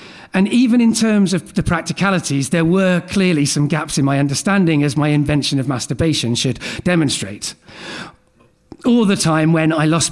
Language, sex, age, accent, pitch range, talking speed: English, male, 40-59, British, 140-185 Hz, 165 wpm